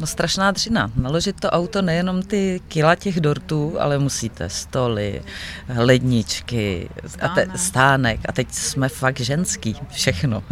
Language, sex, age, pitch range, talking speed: Czech, female, 30-49, 125-155 Hz, 135 wpm